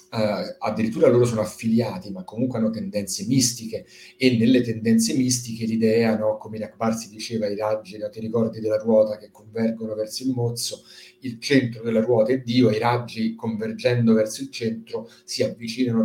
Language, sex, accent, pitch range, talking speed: Italian, male, native, 110-130 Hz, 160 wpm